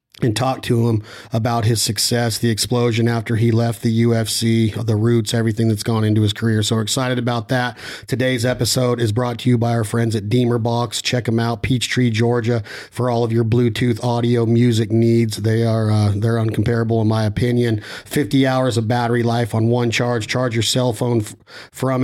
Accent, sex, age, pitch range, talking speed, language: American, male, 40-59, 115-125 Hz, 200 wpm, English